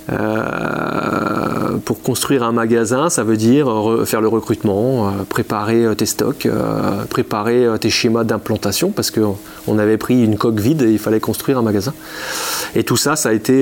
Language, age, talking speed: French, 30-49, 175 wpm